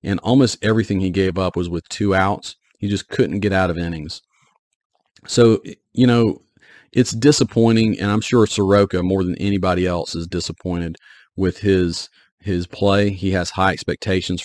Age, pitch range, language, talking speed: 40-59, 90-110 Hz, English, 165 wpm